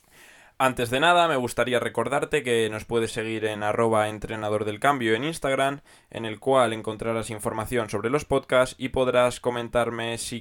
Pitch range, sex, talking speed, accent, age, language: 110-145 Hz, male, 165 wpm, Spanish, 10-29, Spanish